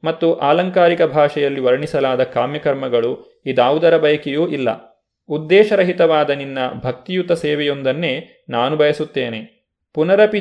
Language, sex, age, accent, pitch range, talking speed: Kannada, male, 30-49, native, 135-170 Hz, 85 wpm